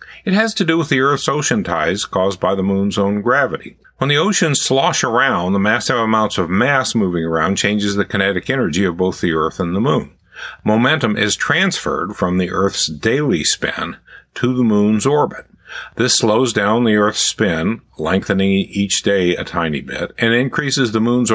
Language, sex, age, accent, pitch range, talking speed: English, male, 50-69, American, 95-125 Hz, 185 wpm